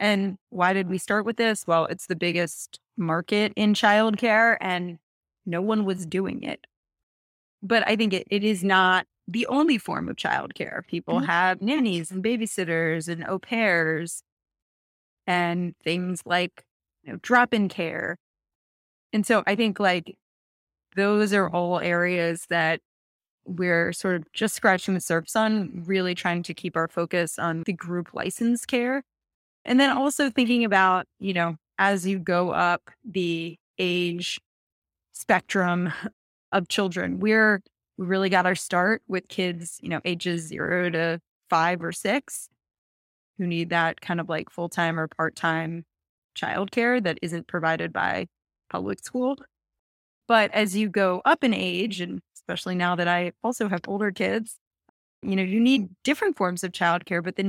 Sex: female